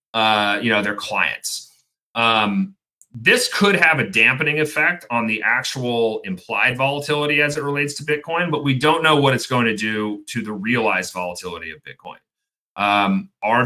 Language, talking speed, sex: English, 170 wpm, male